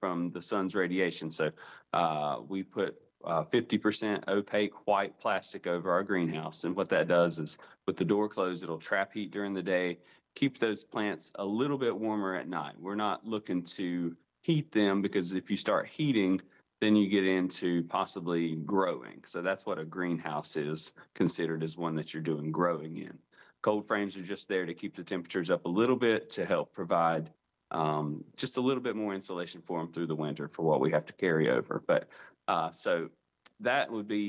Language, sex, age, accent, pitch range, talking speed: English, male, 30-49, American, 85-105 Hz, 195 wpm